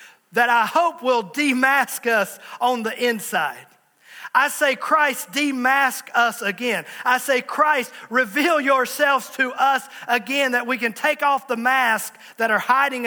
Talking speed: 150 wpm